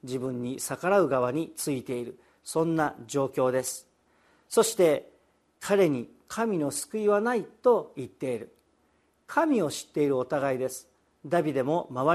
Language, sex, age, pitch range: Japanese, male, 50-69, 150-220 Hz